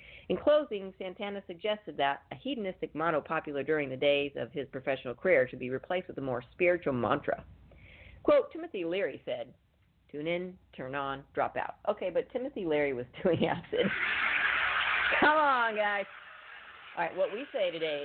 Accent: American